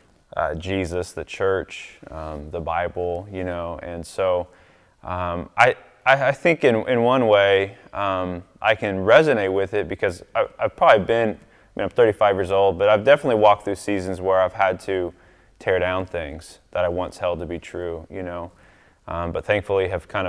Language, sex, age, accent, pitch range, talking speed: English, male, 20-39, American, 90-100 Hz, 190 wpm